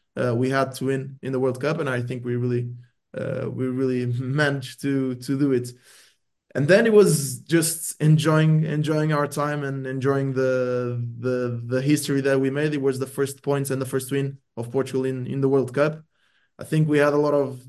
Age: 20-39